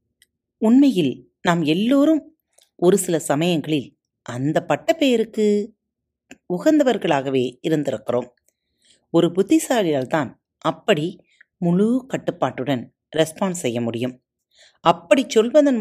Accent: native